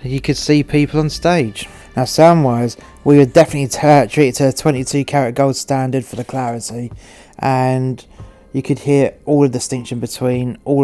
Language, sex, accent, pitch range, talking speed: English, male, British, 125-145 Hz, 175 wpm